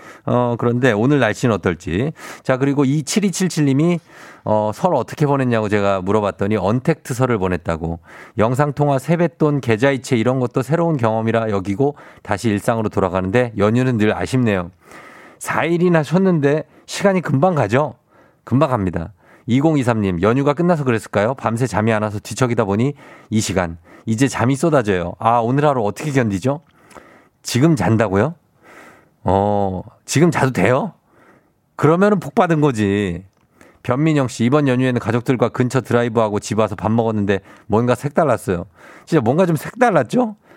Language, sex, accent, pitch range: Korean, male, native, 105-160 Hz